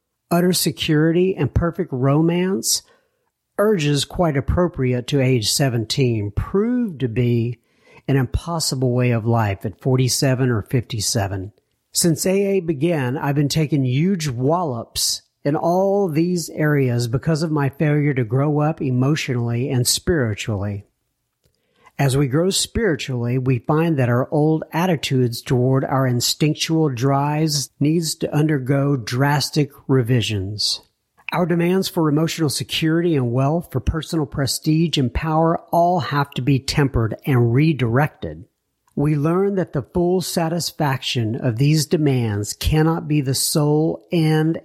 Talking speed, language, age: 130 wpm, English, 60-79